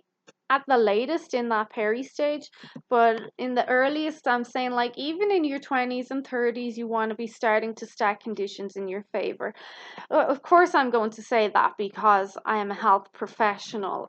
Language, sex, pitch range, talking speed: English, female, 210-255 Hz, 185 wpm